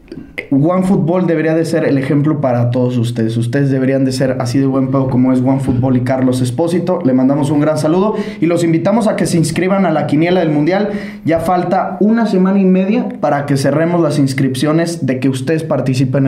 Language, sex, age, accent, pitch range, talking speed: English, male, 20-39, Mexican, 135-170 Hz, 205 wpm